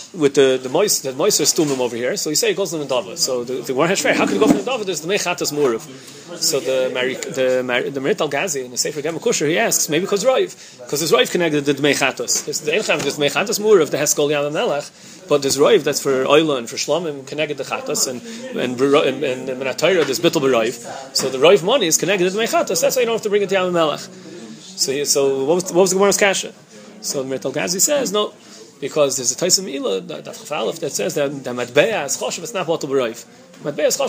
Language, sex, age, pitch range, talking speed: English, male, 30-49, 140-190 Hz, 230 wpm